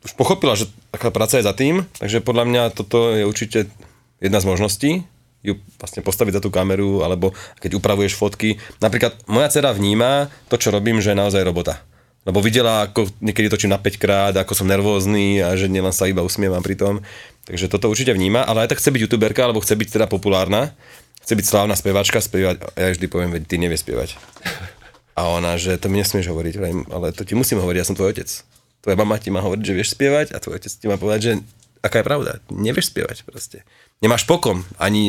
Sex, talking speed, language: male, 210 wpm, Czech